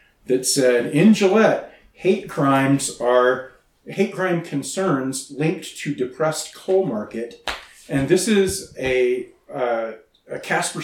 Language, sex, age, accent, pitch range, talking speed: English, male, 40-59, American, 120-155 Hz, 120 wpm